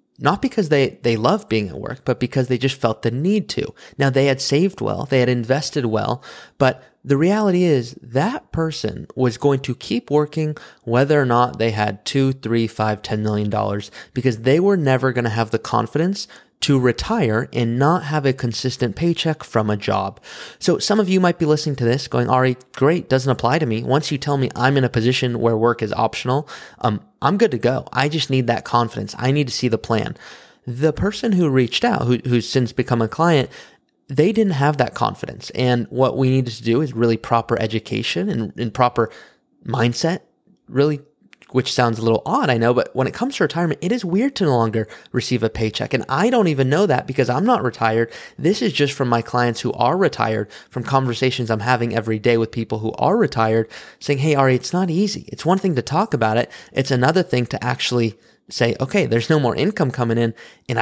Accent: American